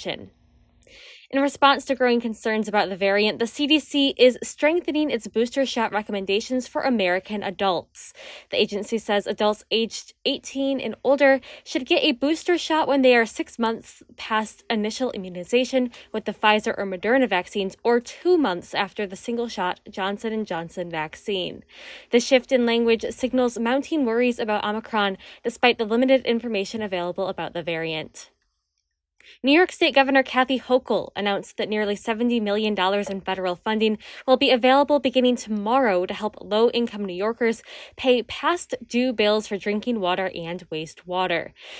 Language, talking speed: English, 155 wpm